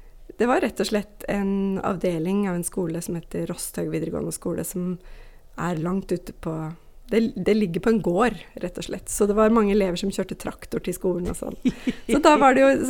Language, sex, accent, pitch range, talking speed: Swedish, female, native, 190-235 Hz, 200 wpm